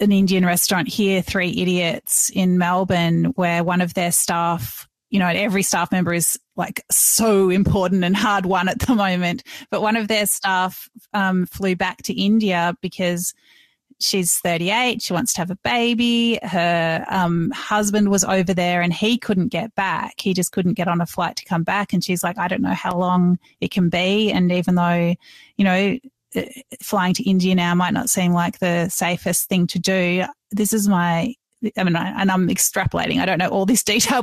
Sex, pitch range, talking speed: female, 180-210 Hz, 195 wpm